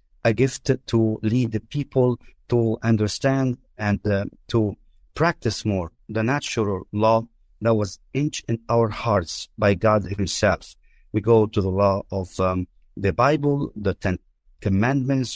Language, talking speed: English, 145 wpm